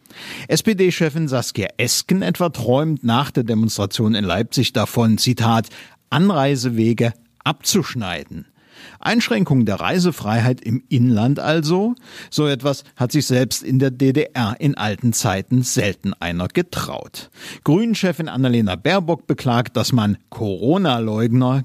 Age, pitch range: 50-69, 115-155 Hz